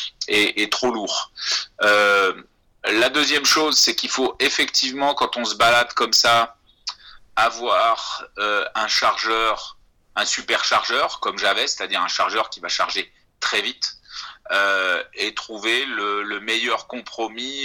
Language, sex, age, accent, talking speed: French, male, 30-49, French, 140 wpm